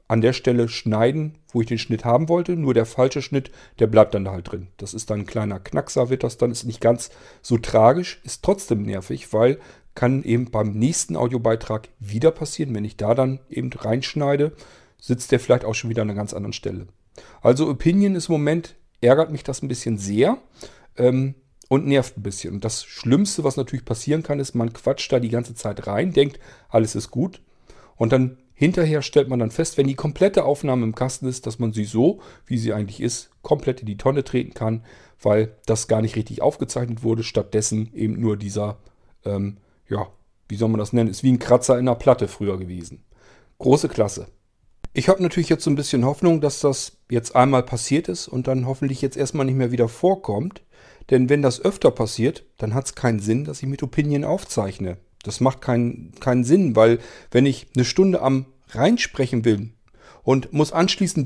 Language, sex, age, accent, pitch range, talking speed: German, male, 40-59, German, 110-140 Hz, 205 wpm